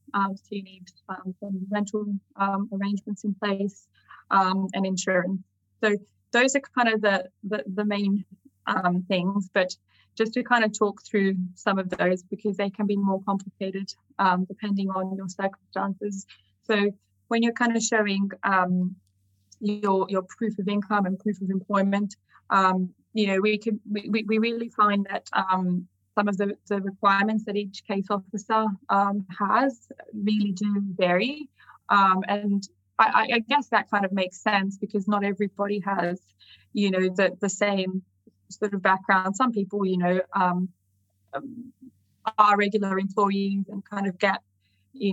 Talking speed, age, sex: 160 wpm, 10-29, female